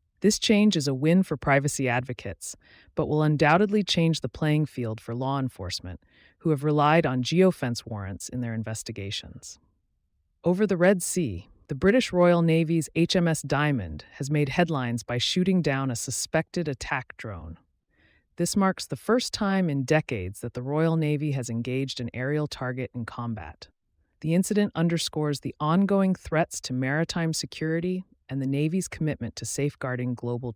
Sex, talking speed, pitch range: female, 160 wpm, 115-165 Hz